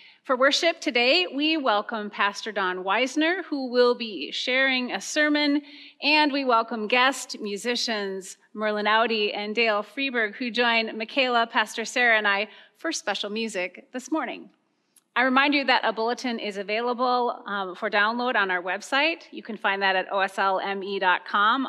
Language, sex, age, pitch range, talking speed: English, female, 30-49, 205-275 Hz, 155 wpm